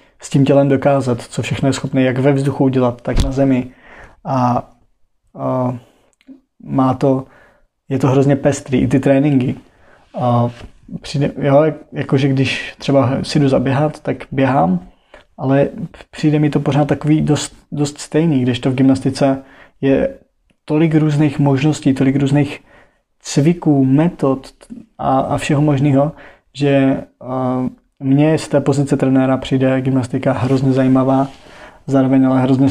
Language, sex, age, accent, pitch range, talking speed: Czech, male, 20-39, native, 130-145 Hz, 130 wpm